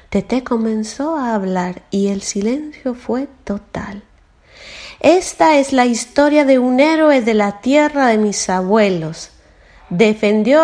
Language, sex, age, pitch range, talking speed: Italian, female, 40-59, 165-265 Hz, 130 wpm